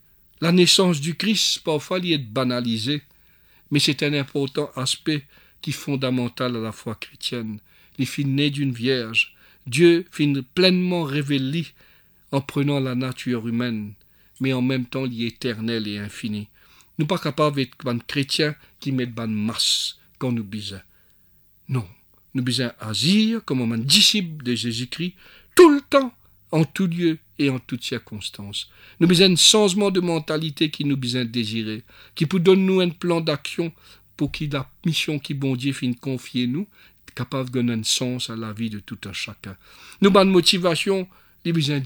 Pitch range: 115-155 Hz